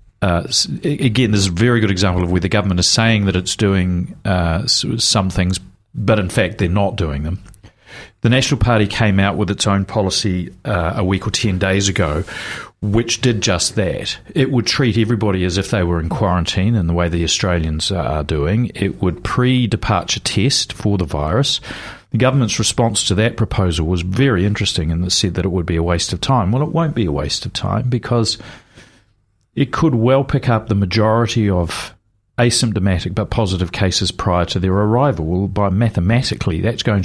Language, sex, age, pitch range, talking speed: English, male, 40-59, 95-120 Hz, 195 wpm